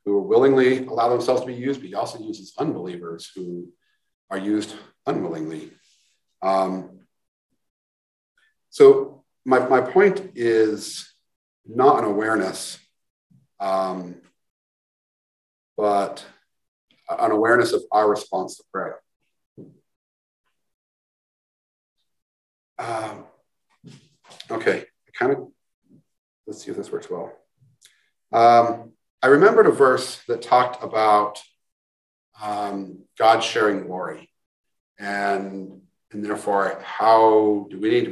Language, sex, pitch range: English, male, 95-130 Hz